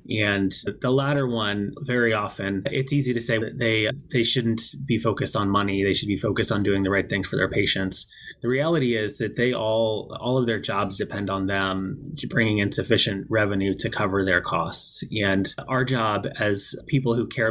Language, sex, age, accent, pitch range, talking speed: English, male, 20-39, American, 100-120 Hz, 200 wpm